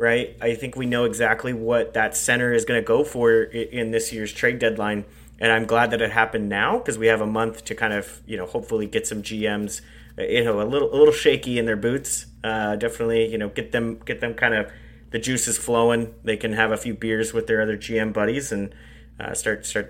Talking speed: 235 wpm